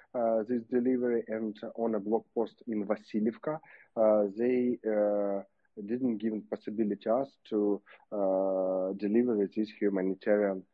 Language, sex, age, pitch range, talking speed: English, male, 40-59, 105-115 Hz, 135 wpm